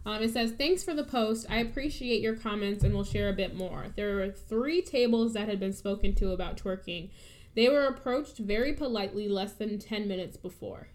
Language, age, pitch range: English, 10-29, 200-235 Hz